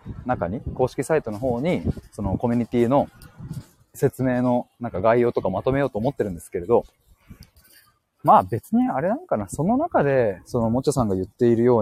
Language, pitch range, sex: Japanese, 105-160 Hz, male